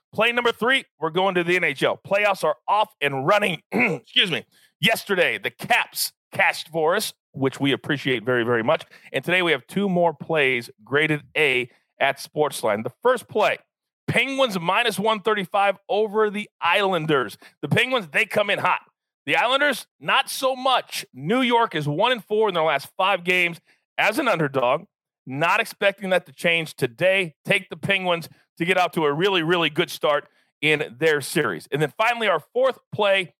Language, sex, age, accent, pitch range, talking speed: English, male, 40-59, American, 155-220 Hz, 180 wpm